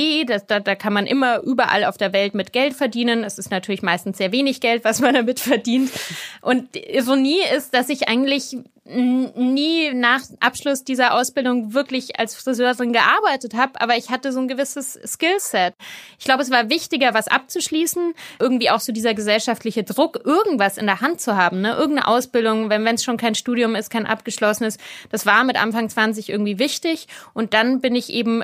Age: 30-49